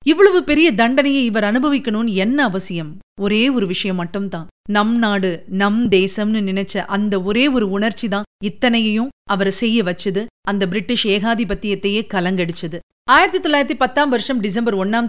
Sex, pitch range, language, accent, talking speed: female, 190-250 Hz, Tamil, native, 145 wpm